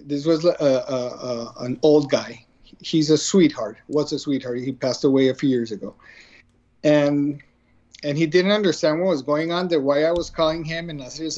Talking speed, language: 200 wpm, English